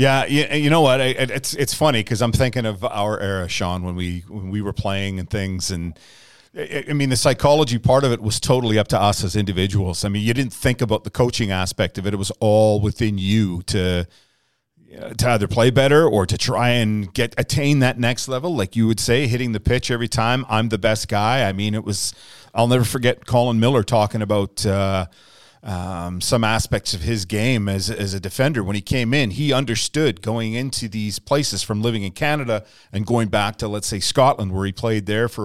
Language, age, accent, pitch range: English, 40-59, American, 100-125 Hz